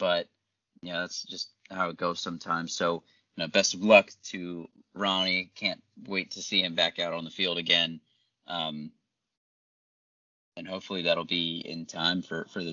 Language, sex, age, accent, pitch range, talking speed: English, male, 30-49, American, 85-100 Hz, 180 wpm